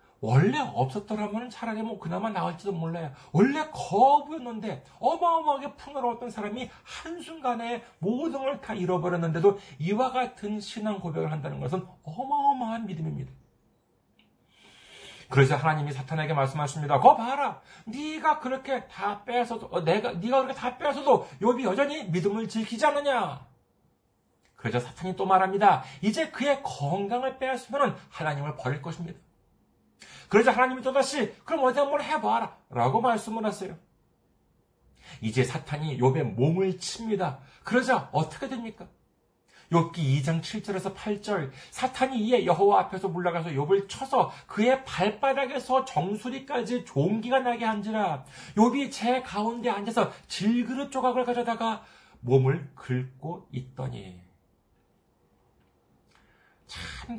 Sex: male